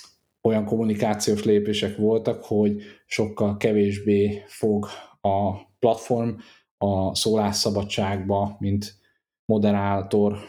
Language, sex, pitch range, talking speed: Hungarian, male, 100-110 Hz, 80 wpm